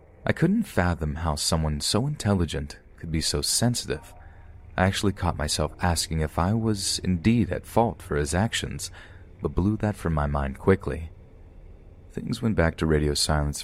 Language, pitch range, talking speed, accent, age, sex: English, 75-100 Hz, 165 wpm, American, 30-49, male